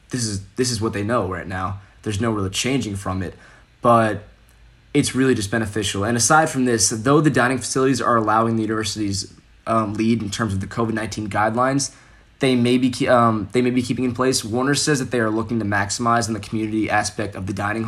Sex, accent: male, American